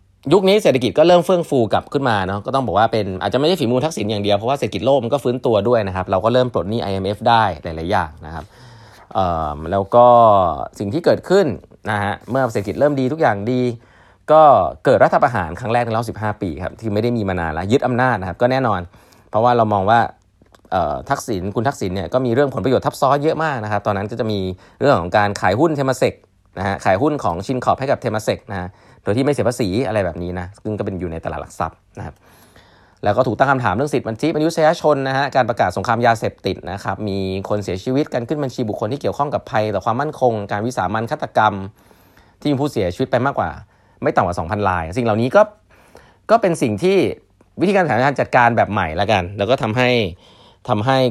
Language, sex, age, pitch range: Thai, male, 20-39, 95-130 Hz